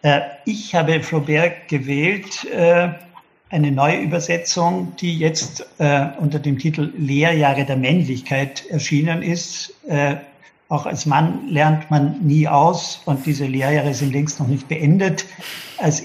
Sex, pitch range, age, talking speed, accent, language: male, 140-165 Hz, 60-79, 125 wpm, German, German